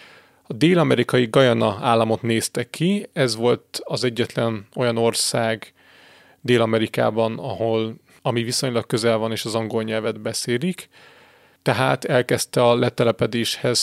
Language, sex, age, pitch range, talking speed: Hungarian, male, 30-49, 115-130 Hz, 115 wpm